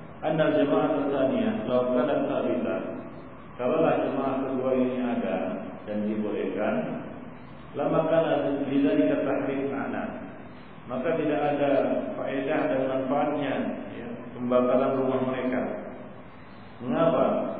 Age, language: 50-69, Malay